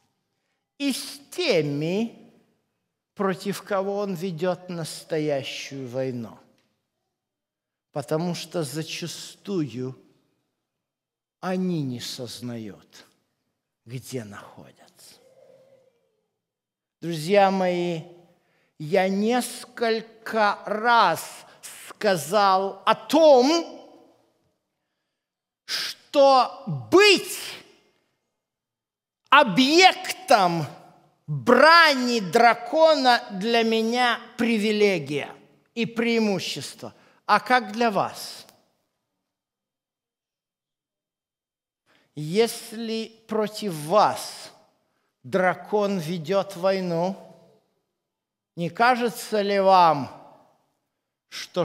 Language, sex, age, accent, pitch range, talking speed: Russian, male, 50-69, native, 165-235 Hz, 60 wpm